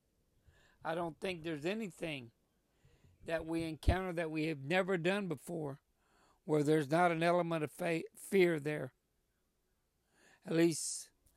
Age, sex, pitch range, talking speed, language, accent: 60-79, male, 160-190 Hz, 130 wpm, English, American